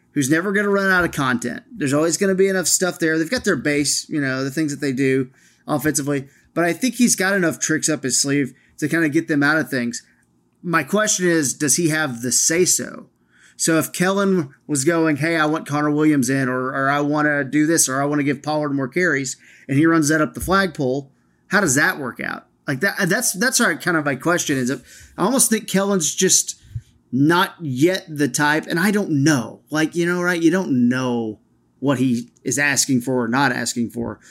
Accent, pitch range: American, 130-170 Hz